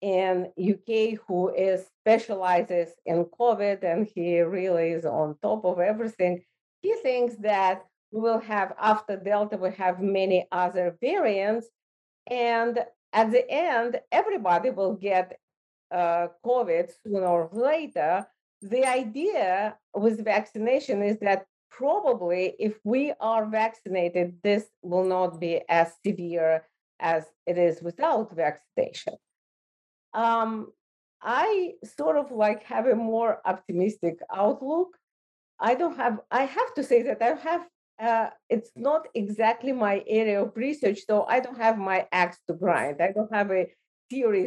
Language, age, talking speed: English, 40-59, 140 wpm